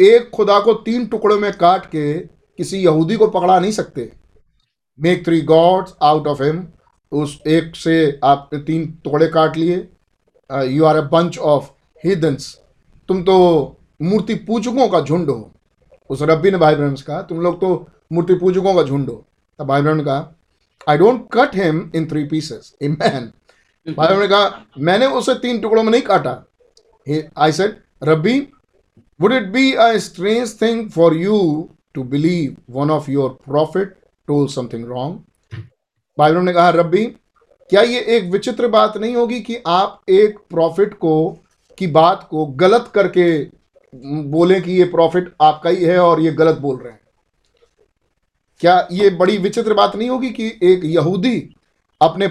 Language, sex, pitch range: Hindi, male, 155-205 Hz